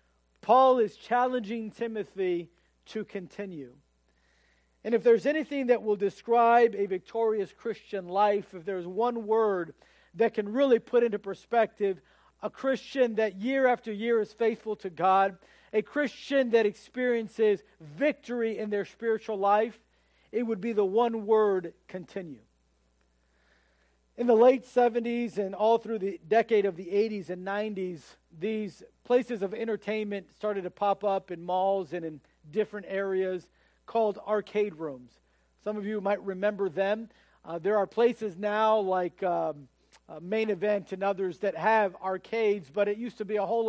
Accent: American